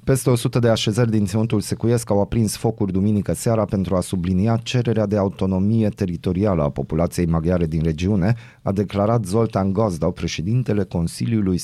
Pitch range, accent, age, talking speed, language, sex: 85-115 Hz, native, 30-49, 155 wpm, Romanian, male